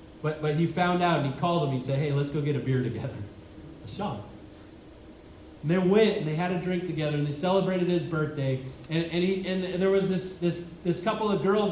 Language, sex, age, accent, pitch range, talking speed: English, male, 30-49, American, 150-195 Hz, 230 wpm